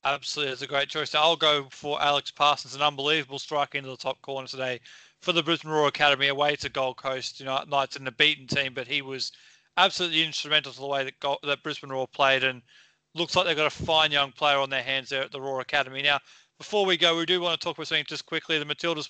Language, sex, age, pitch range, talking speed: English, male, 30-49, 140-165 Hz, 260 wpm